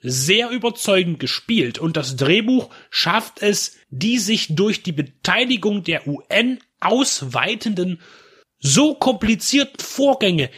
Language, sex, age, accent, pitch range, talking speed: German, male, 30-49, German, 150-225 Hz, 110 wpm